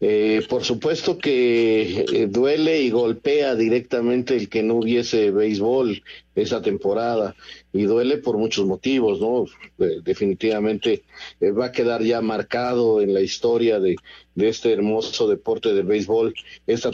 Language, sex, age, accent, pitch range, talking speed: Spanish, male, 50-69, Mexican, 120-160 Hz, 140 wpm